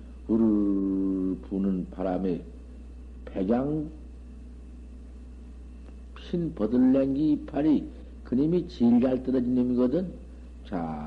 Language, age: Korean, 60-79